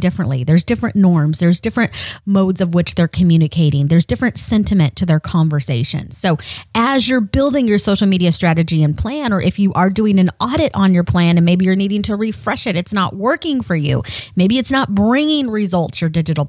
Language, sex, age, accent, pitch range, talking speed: English, female, 30-49, American, 165-210 Hz, 205 wpm